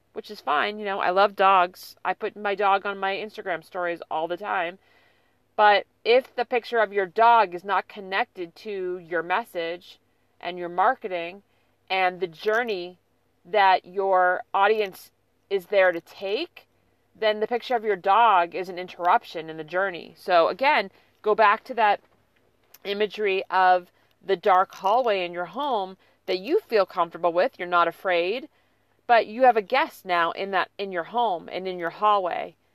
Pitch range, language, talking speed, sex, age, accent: 185-240 Hz, English, 170 wpm, female, 40-59, American